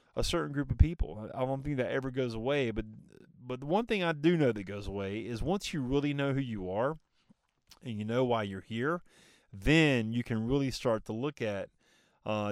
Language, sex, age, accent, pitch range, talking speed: English, male, 30-49, American, 110-140 Hz, 220 wpm